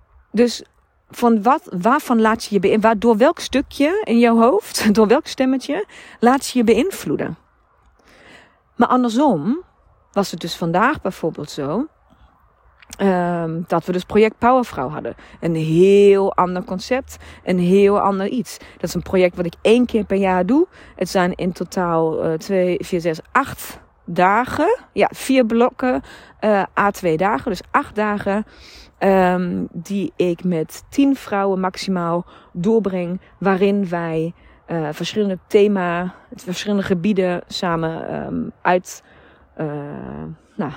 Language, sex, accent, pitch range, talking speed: Dutch, female, Dutch, 170-225 Hz, 130 wpm